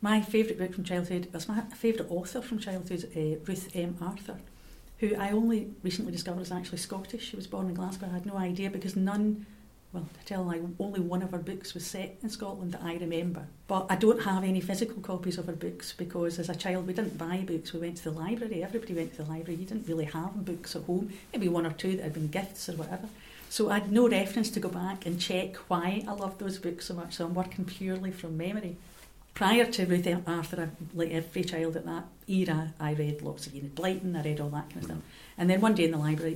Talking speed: 250 wpm